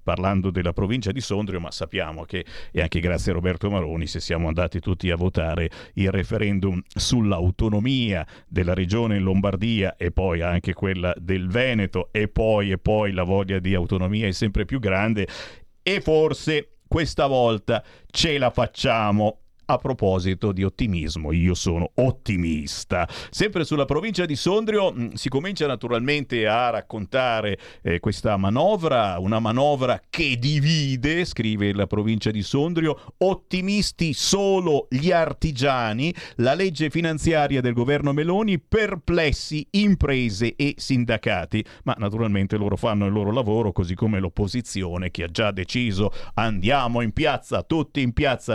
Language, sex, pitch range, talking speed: Italian, male, 95-140 Hz, 140 wpm